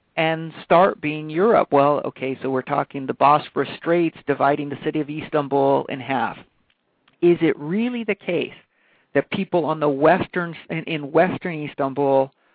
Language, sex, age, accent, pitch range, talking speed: English, male, 50-69, American, 140-170 Hz, 160 wpm